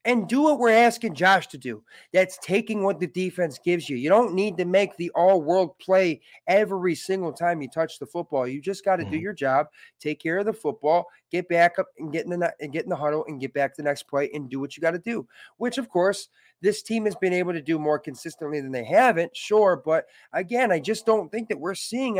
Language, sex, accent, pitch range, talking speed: English, male, American, 150-200 Hz, 250 wpm